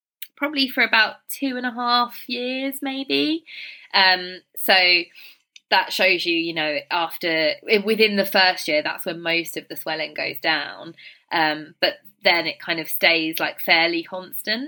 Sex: female